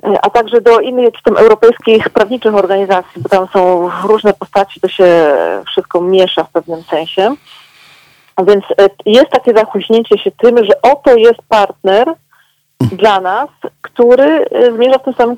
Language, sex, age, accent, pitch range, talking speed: Polish, female, 40-59, native, 190-235 Hz, 150 wpm